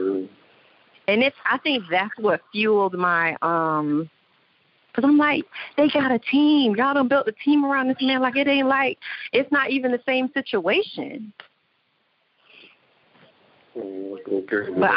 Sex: female